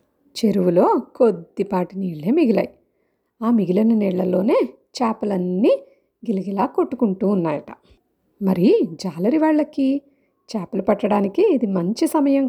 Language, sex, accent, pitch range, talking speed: Telugu, female, native, 185-250 Hz, 90 wpm